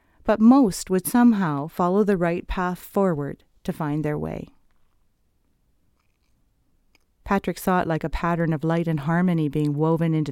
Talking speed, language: 150 wpm, English